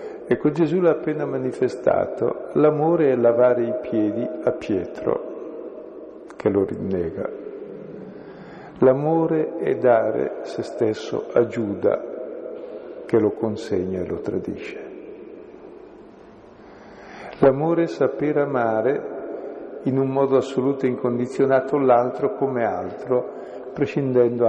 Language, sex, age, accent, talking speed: Italian, male, 50-69, native, 105 wpm